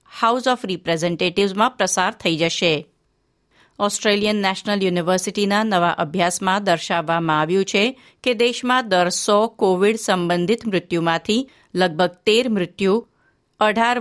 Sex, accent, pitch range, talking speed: female, native, 180-220 Hz, 105 wpm